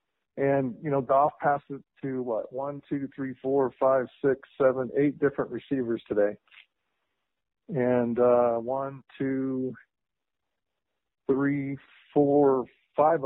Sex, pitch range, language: male, 115-135 Hz, English